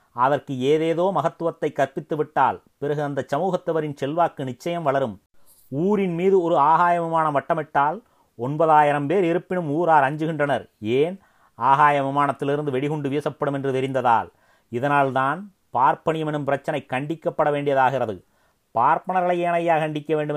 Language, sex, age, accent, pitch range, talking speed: Tamil, male, 30-49, native, 140-170 Hz, 105 wpm